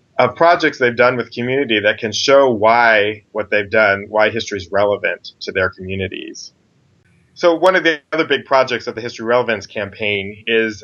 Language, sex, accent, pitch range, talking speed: English, male, American, 105-125 Hz, 185 wpm